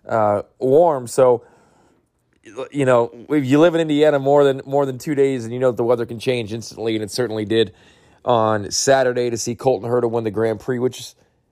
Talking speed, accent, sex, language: 205 wpm, American, male, English